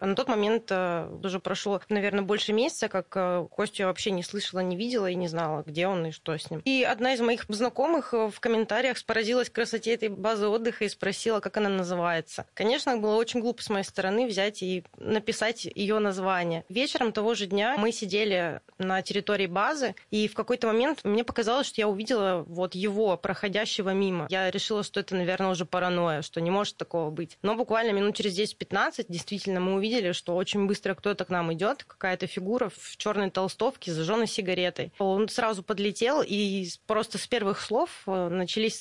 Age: 20-39